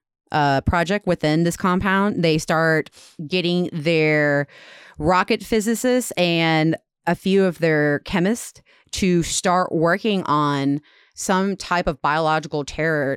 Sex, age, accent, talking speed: female, 30-49, American, 120 wpm